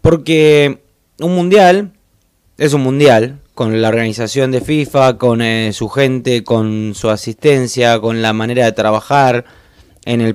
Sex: male